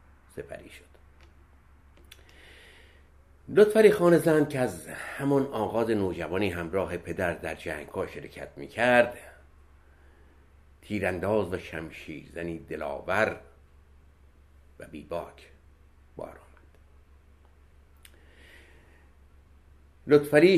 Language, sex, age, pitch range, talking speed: Persian, male, 60-79, 70-105 Hz, 75 wpm